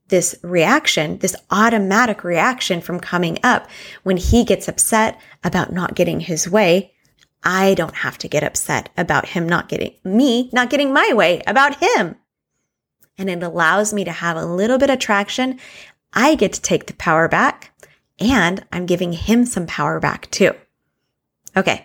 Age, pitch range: 20-39, 175-225 Hz